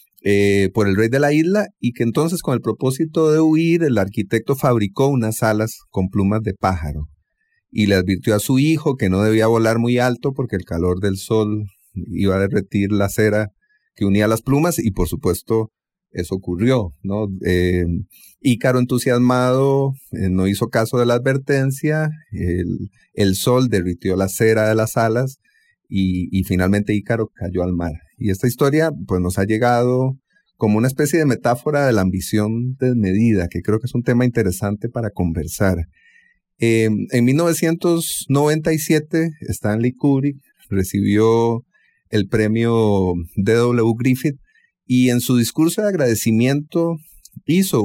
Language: English